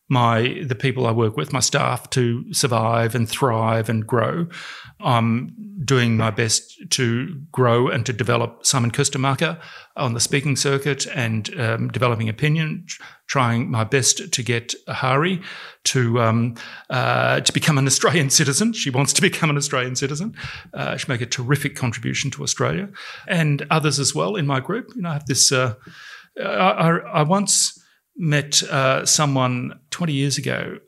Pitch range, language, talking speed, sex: 125-155 Hz, English, 165 wpm, male